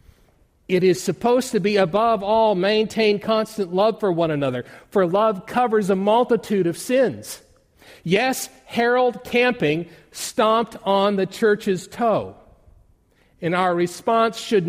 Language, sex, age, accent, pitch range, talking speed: English, male, 50-69, American, 135-220 Hz, 130 wpm